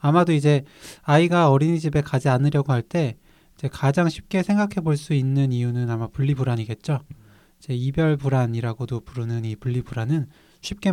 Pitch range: 125-160 Hz